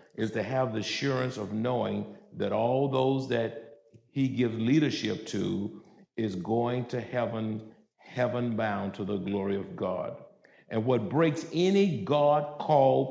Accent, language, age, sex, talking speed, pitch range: American, English, 50-69, male, 145 wpm, 115-150 Hz